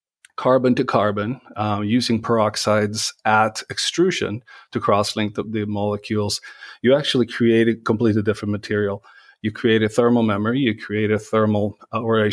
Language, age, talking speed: English, 40-59, 155 wpm